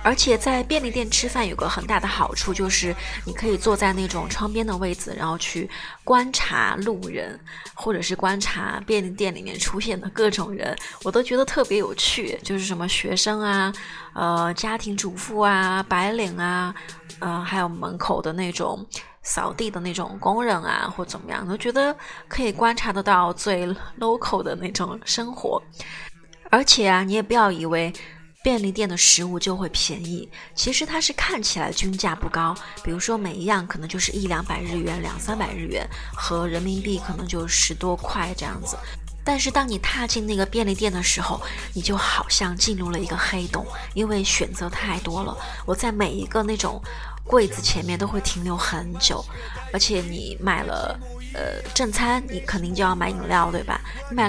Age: 20-39